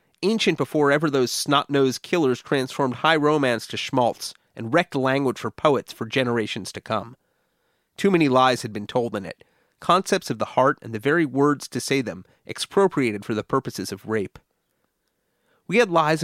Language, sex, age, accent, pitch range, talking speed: English, male, 30-49, American, 120-160 Hz, 175 wpm